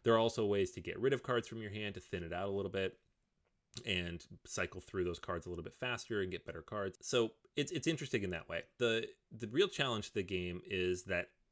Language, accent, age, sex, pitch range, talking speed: English, American, 30-49, male, 90-120 Hz, 250 wpm